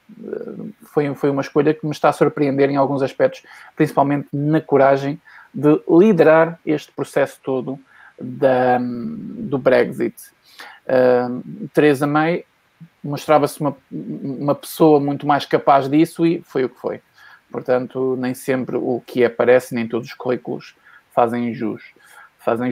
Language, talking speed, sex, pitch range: Portuguese, 130 wpm, male, 135-195 Hz